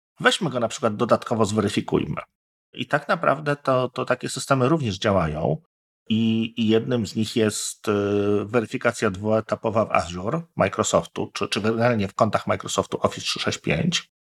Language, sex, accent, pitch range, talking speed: Polish, male, native, 110-135 Hz, 150 wpm